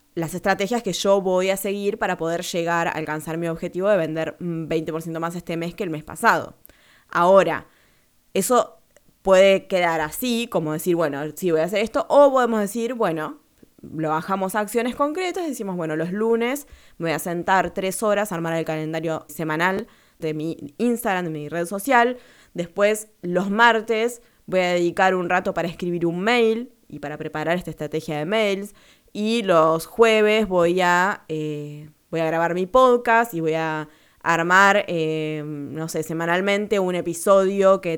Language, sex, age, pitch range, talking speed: Spanish, female, 20-39, 165-210 Hz, 170 wpm